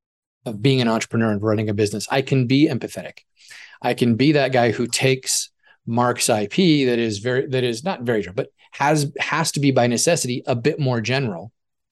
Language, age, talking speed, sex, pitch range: English, 30-49, 200 wpm, male, 115-145 Hz